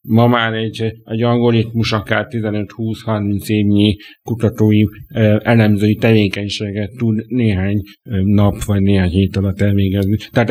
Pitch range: 100-115 Hz